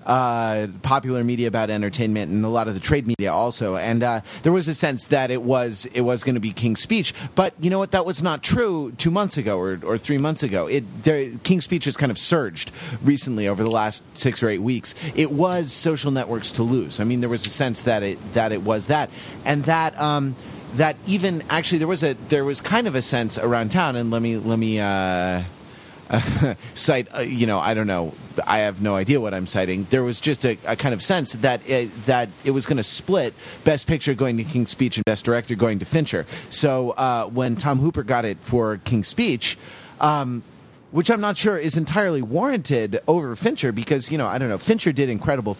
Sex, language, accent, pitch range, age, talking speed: male, English, American, 110-150 Hz, 30-49, 230 wpm